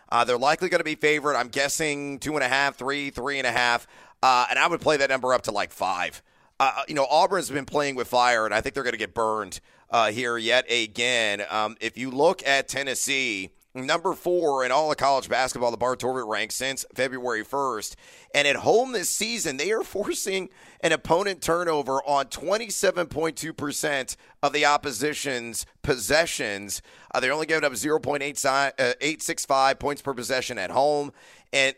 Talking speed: 190 wpm